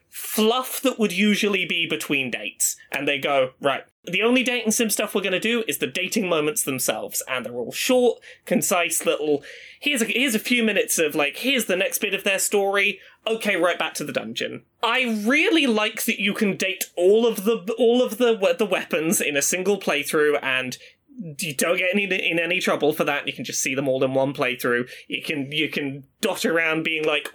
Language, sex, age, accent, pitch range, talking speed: English, male, 20-39, British, 150-235 Hz, 215 wpm